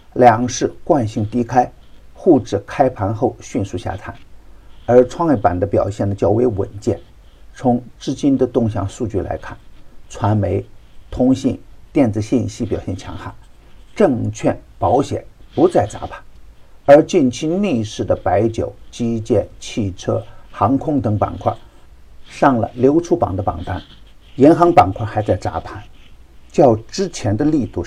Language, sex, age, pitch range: Chinese, male, 50-69, 100-125 Hz